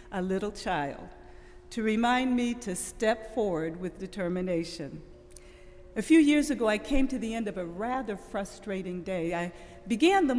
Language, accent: English, American